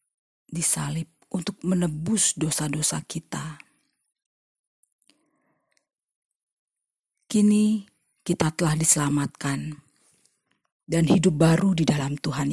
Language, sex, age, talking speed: Indonesian, female, 40-59, 70 wpm